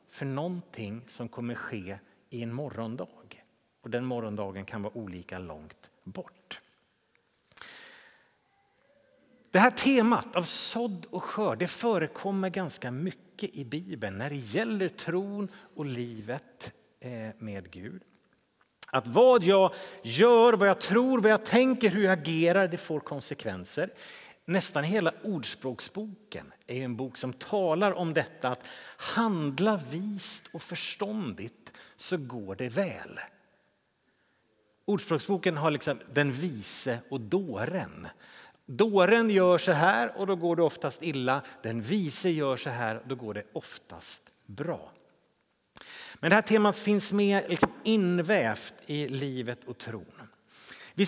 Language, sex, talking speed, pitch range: Swedish, male, 135 wpm, 140-210 Hz